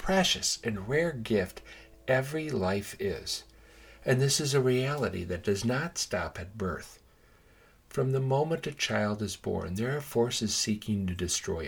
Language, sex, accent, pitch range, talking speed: English, male, American, 95-120 Hz, 160 wpm